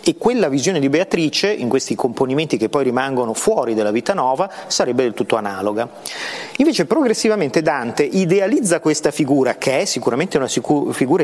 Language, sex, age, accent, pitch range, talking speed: Italian, male, 40-59, native, 130-195 Hz, 160 wpm